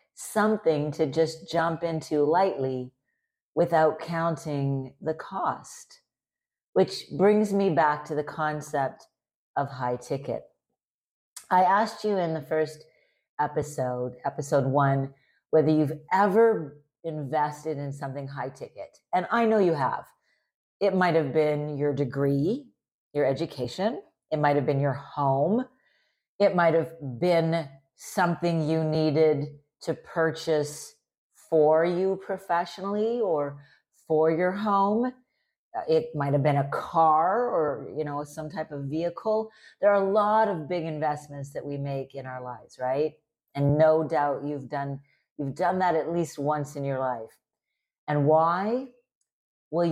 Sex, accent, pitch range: female, American, 145-175 Hz